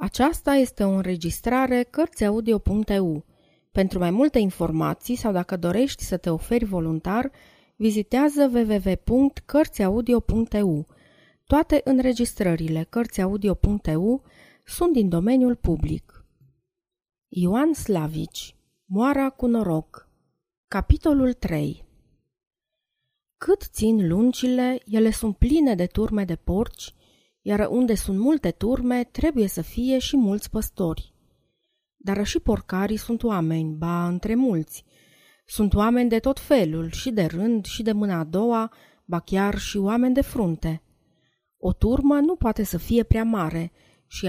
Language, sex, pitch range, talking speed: Romanian, female, 180-250 Hz, 120 wpm